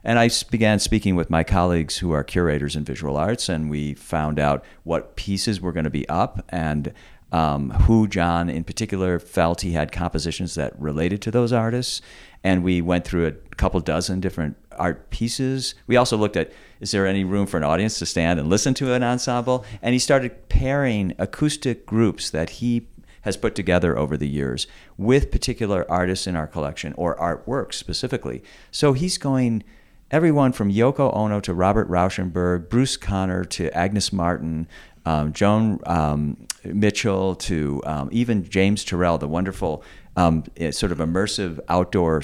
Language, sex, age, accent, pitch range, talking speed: English, male, 50-69, American, 80-110 Hz, 170 wpm